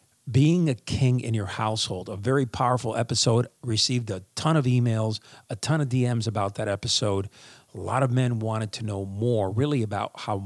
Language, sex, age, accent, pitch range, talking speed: English, male, 40-59, American, 105-125 Hz, 190 wpm